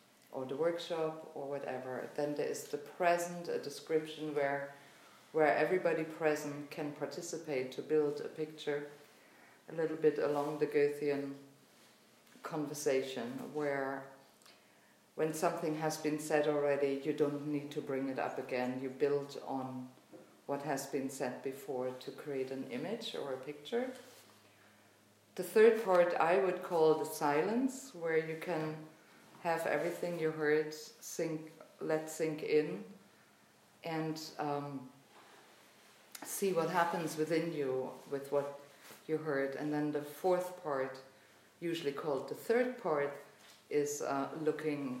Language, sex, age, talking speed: English, female, 50-69, 135 wpm